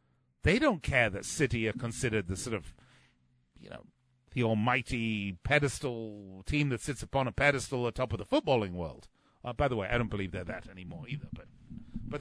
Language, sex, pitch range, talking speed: English, male, 125-165 Hz, 200 wpm